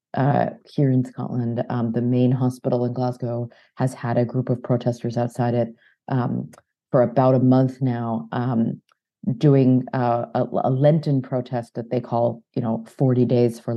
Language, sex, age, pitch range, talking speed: English, female, 30-49, 120-135 Hz, 170 wpm